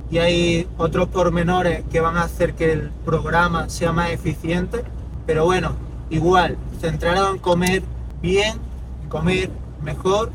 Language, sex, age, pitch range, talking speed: Spanish, male, 20-39, 160-180 Hz, 140 wpm